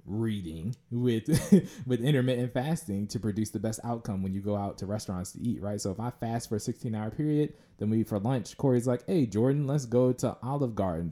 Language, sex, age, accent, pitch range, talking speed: English, male, 20-39, American, 100-125 Hz, 220 wpm